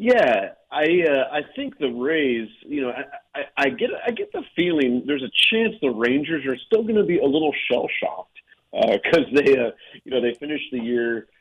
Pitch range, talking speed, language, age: 100-125 Hz, 215 wpm, English, 40-59